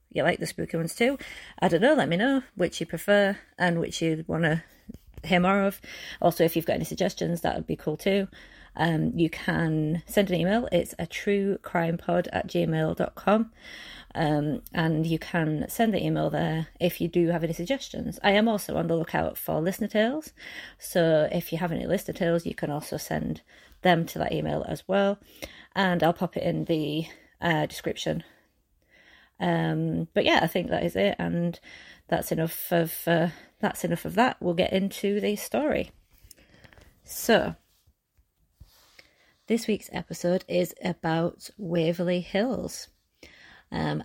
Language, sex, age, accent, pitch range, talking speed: English, female, 30-49, British, 165-195 Hz, 165 wpm